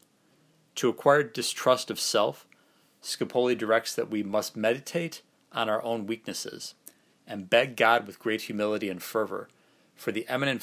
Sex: male